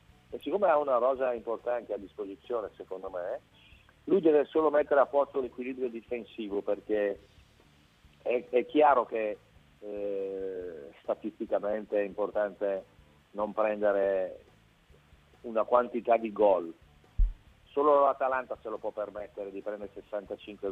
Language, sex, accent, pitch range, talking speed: Italian, male, native, 100-130 Hz, 120 wpm